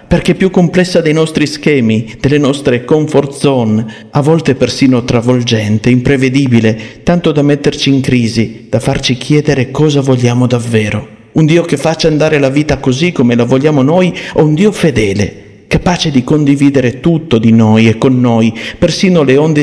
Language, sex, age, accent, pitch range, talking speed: Italian, male, 50-69, native, 115-150 Hz, 165 wpm